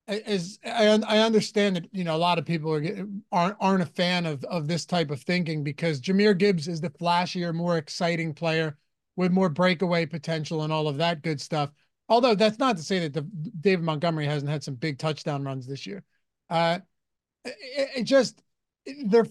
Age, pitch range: 30-49, 170-210 Hz